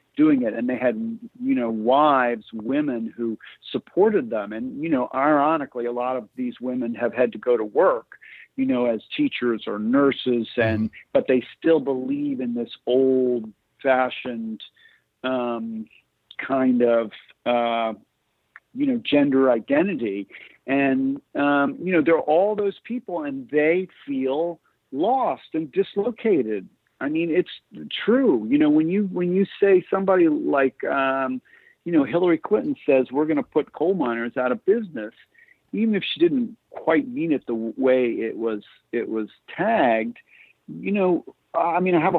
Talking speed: 160 wpm